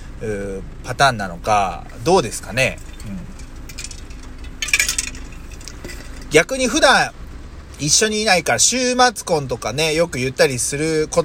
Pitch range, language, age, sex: 105-160 Hz, Japanese, 30-49, male